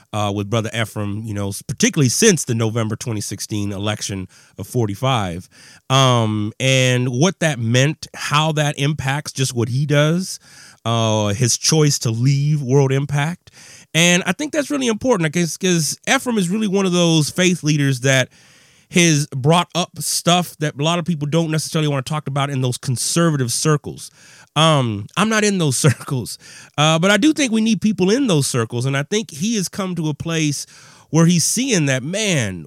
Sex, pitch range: male, 120-175 Hz